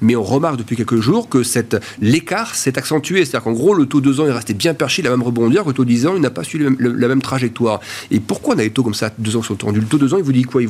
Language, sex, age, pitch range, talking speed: French, male, 40-59, 120-155 Hz, 360 wpm